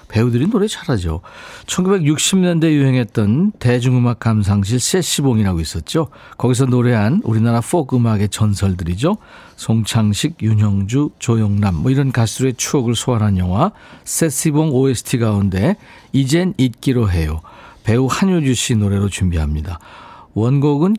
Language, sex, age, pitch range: Korean, male, 50-69, 105-150 Hz